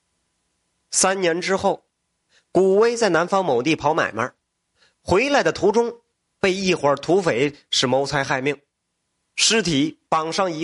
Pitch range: 145-200 Hz